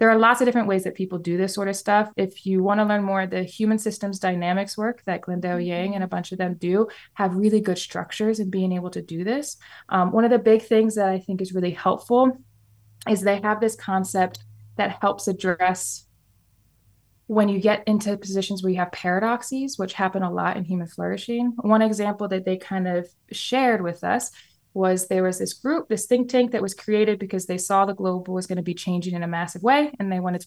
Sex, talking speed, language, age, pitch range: female, 230 wpm, English, 20-39, 180-215 Hz